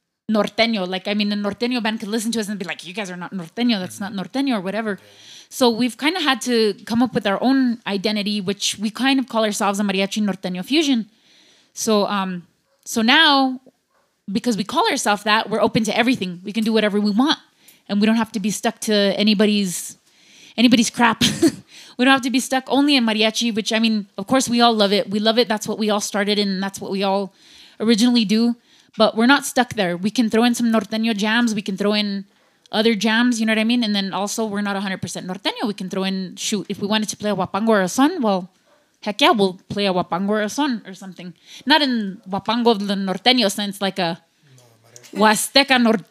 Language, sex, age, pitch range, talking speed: English, female, 20-39, 200-240 Hz, 235 wpm